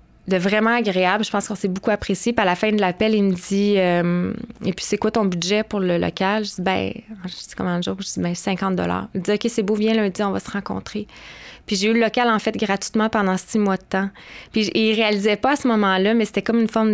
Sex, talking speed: female, 275 wpm